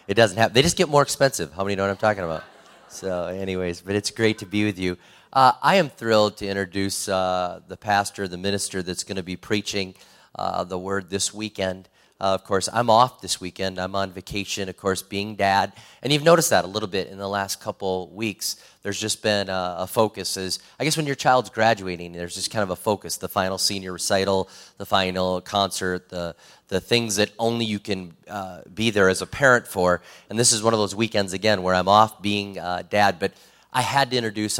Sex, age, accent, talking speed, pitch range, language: male, 30-49, American, 225 wpm, 90-110 Hz, English